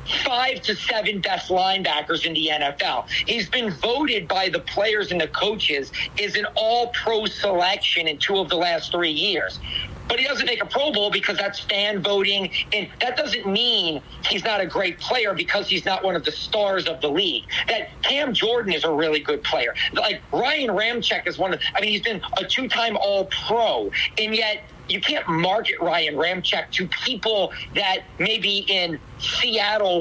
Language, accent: English, American